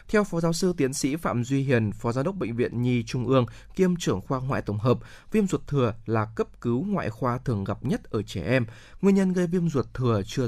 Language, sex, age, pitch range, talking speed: Vietnamese, male, 20-39, 110-150 Hz, 250 wpm